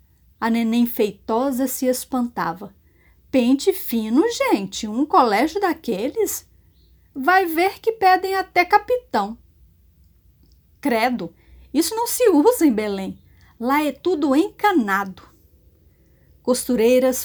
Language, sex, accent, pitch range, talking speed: Portuguese, female, Brazilian, 205-330 Hz, 100 wpm